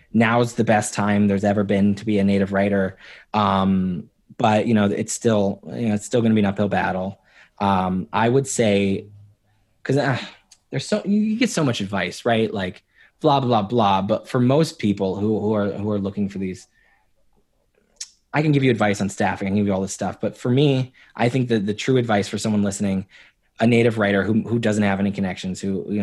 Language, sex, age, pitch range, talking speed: English, male, 20-39, 100-120 Hz, 220 wpm